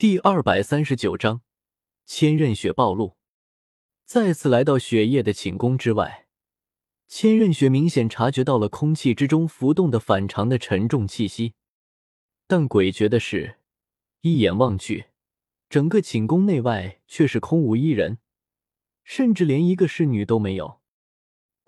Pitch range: 105-160 Hz